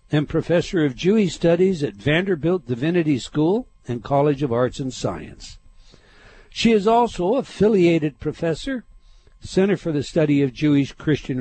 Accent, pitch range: American, 135-195 Hz